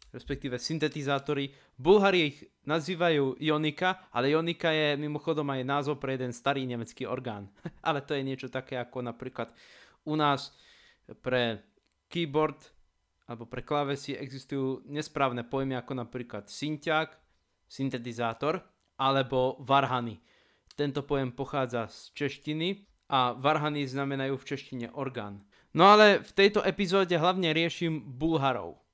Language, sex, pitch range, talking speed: Slovak, male, 130-160 Hz, 120 wpm